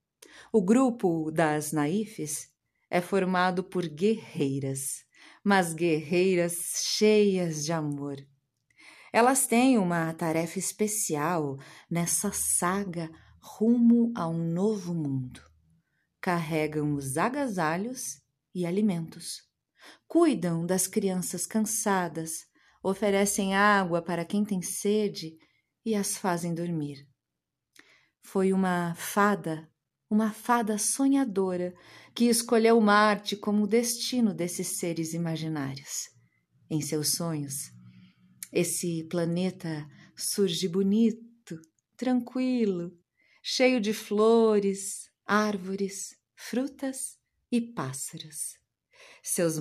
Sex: female